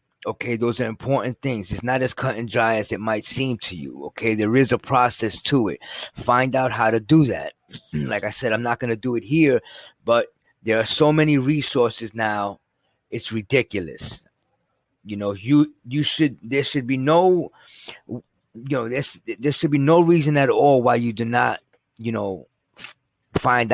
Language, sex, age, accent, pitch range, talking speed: English, male, 30-49, American, 110-140 Hz, 195 wpm